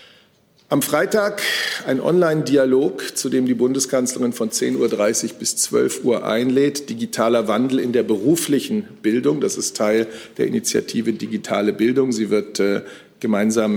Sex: male